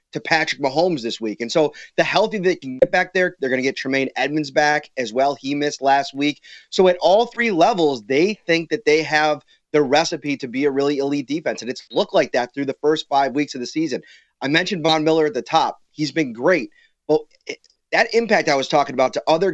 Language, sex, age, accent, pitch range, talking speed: English, male, 30-49, American, 145-180 Hz, 240 wpm